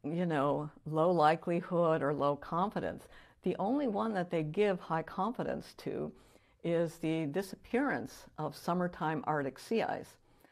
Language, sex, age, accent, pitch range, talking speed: English, female, 60-79, American, 145-180 Hz, 135 wpm